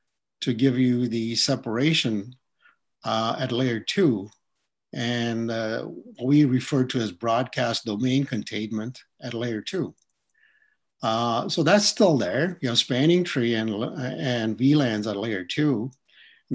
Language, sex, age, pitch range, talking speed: English, male, 50-69, 115-145 Hz, 135 wpm